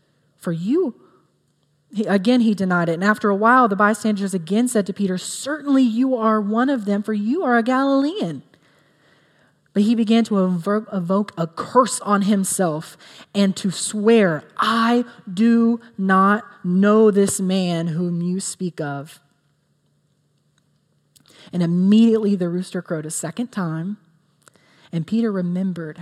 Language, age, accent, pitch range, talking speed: English, 30-49, American, 160-210 Hz, 140 wpm